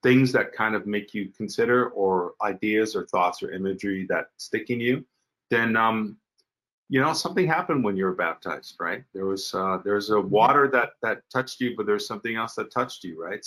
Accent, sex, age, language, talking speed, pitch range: American, male, 40-59, English, 205 wpm, 95-115 Hz